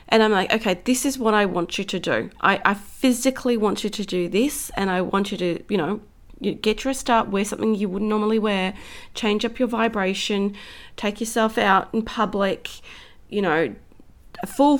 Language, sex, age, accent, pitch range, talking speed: English, female, 30-49, Australian, 190-235 Hz, 200 wpm